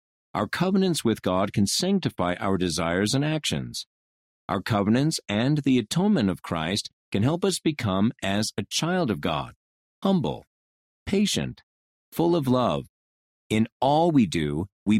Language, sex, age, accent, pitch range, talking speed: English, male, 50-69, American, 90-140 Hz, 145 wpm